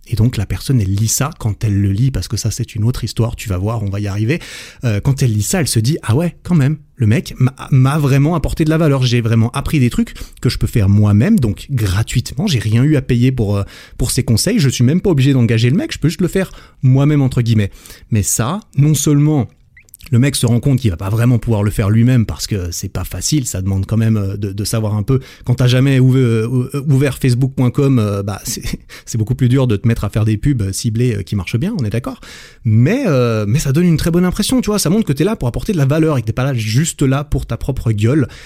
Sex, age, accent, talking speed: male, 30-49, French, 270 wpm